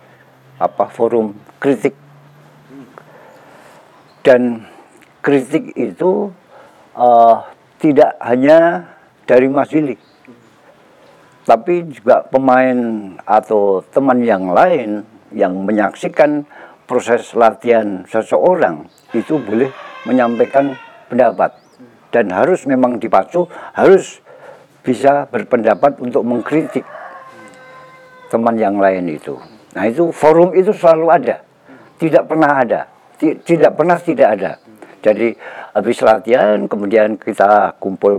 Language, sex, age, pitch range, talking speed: Indonesian, male, 60-79, 110-155 Hz, 95 wpm